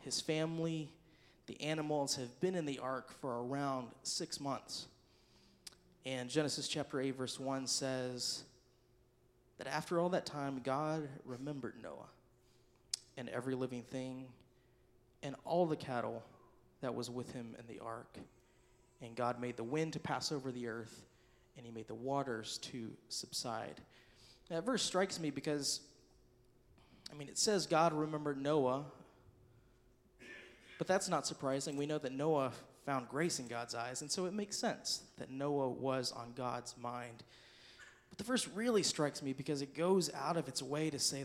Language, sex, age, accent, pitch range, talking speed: English, male, 30-49, American, 125-155 Hz, 160 wpm